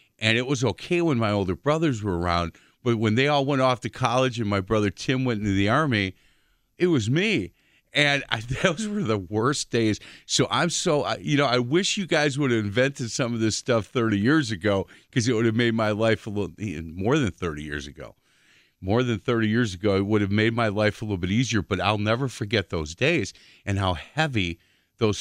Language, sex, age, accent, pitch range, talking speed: English, male, 40-59, American, 100-130 Hz, 230 wpm